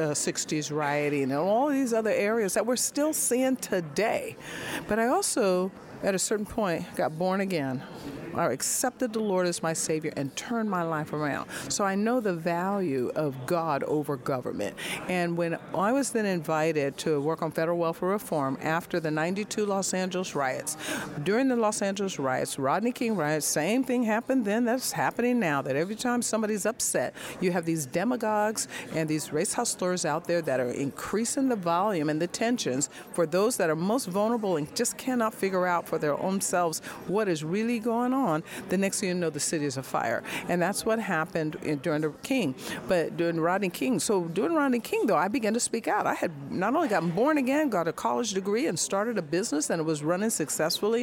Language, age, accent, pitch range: English, 50-69, American, 160-220 Hz